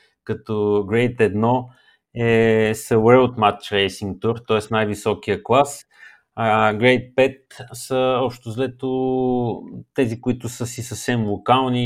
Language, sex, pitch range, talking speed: Bulgarian, male, 110-130 Hz, 115 wpm